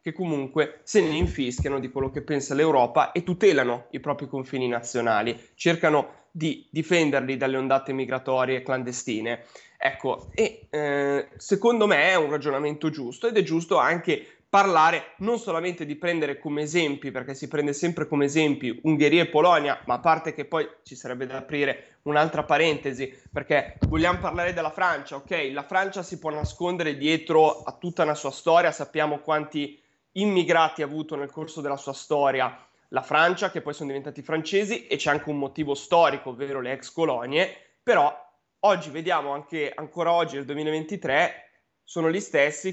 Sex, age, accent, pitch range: male, 20-39, native, 135-160 Hz